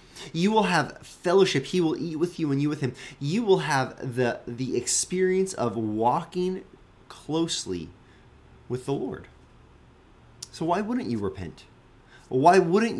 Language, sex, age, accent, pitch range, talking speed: English, male, 20-39, American, 125-170 Hz, 150 wpm